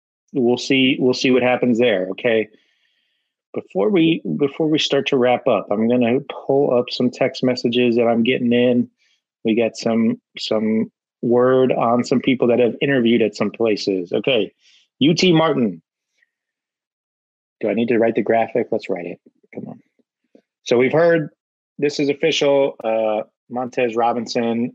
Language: English